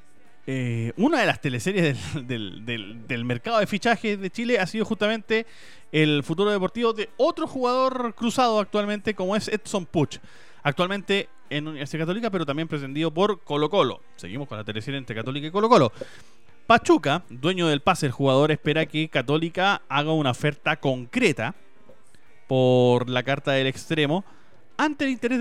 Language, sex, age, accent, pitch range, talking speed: Spanish, male, 30-49, Argentinian, 145-220 Hz, 165 wpm